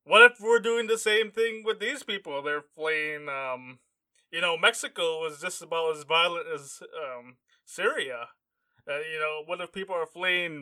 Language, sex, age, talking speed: English, male, 20-39, 180 wpm